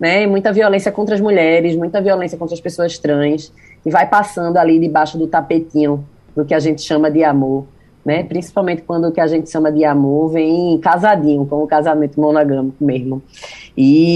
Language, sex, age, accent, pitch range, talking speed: Portuguese, female, 20-39, Brazilian, 155-205 Hz, 190 wpm